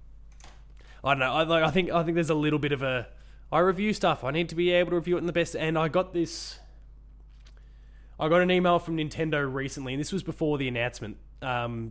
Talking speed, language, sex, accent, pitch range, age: 225 wpm, English, male, Australian, 115-150 Hz, 20-39